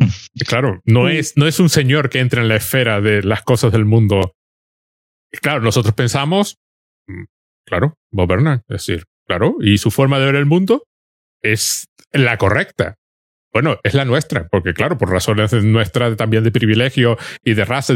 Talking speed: 165 wpm